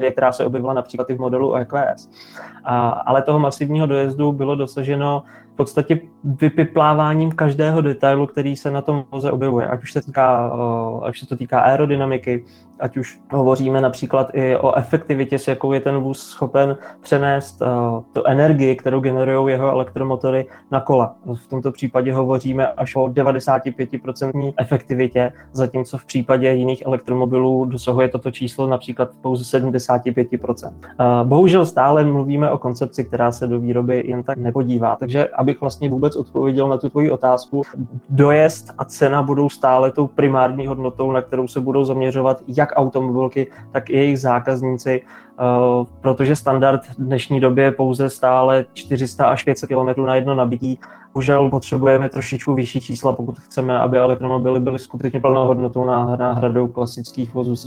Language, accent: Czech, native